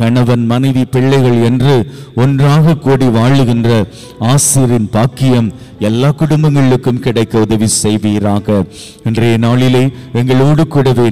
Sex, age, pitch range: male, 50-69, 115-135 Hz